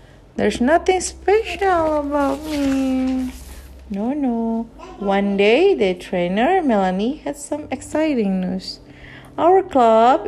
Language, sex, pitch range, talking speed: Indonesian, female, 200-300 Hz, 105 wpm